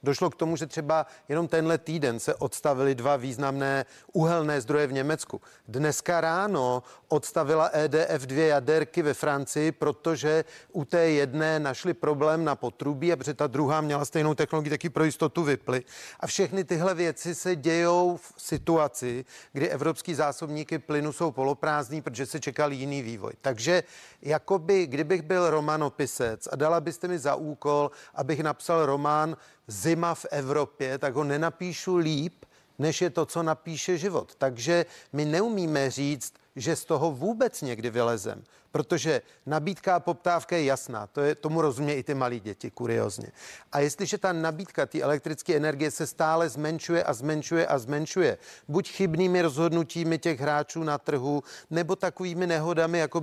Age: 40-59